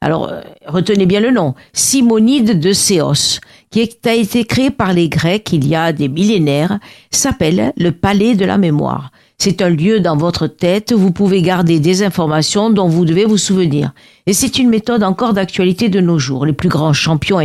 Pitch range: 160-215 Hz